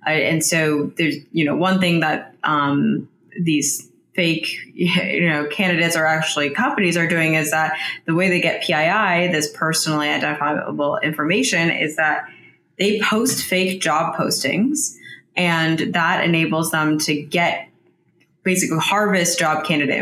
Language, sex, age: English, female, 20-39